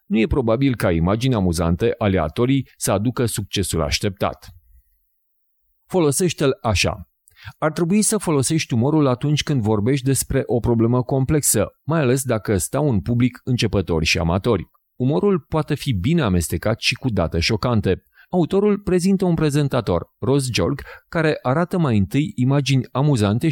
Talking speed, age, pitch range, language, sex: 145 wpm, 30-49, 95-140 Hz, Hungarian, male